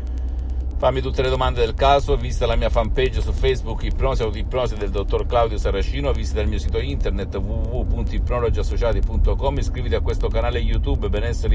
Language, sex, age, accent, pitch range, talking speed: Italian, male, 50-69, native, 75-115 Hz, 160 wpm